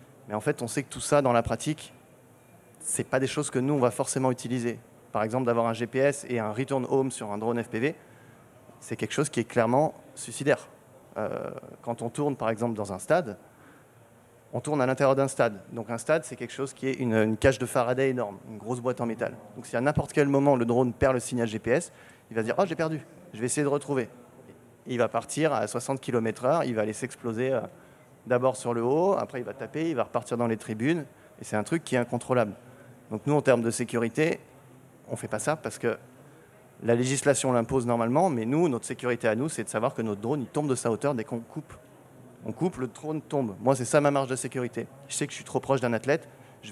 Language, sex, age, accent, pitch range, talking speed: French, male, 30-49, French, 115-135 Hz, 245 wpm